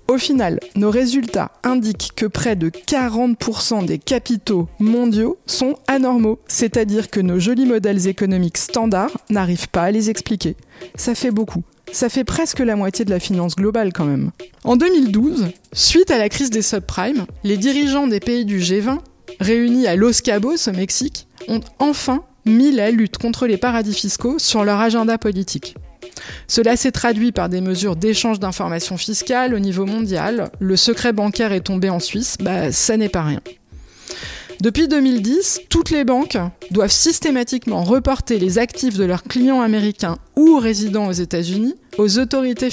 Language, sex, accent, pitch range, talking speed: French, female, French, 195-255 Hz, 165 wpm